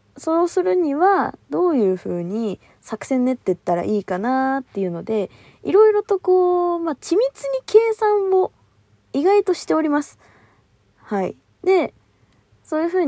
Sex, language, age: female, Japanese, 20-39